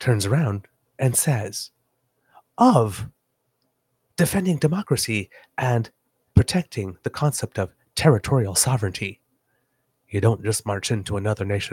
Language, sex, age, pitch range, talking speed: English, male, 30-49, 105-150 Hz, 105 wpm